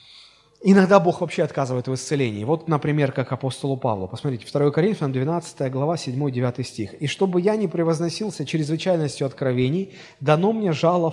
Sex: male